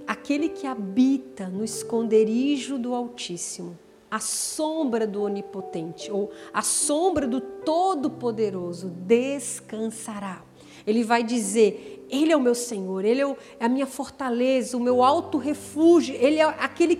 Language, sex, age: Portuguese, female, 50-69